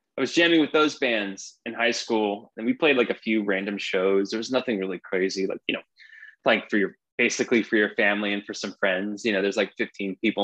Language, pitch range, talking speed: English, 100-120 Hz, 240 wpm